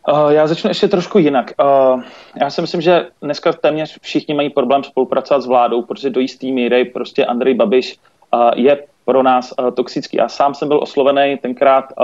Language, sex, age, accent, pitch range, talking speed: Czech, male, 30-49, native, 125-140 Hz, 190 wpm